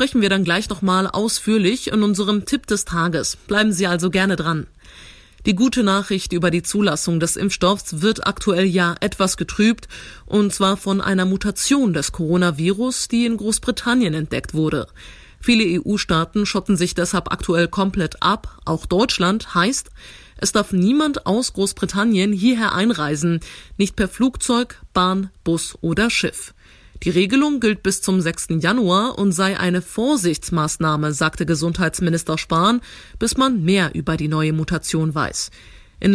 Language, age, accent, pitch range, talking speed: German, 30-49, German, 170-215 Hz, 150 wpm